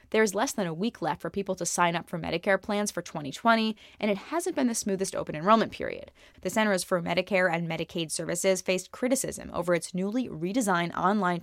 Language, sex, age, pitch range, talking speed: English, female, 20-39, 175-205 Hz, 210 wpm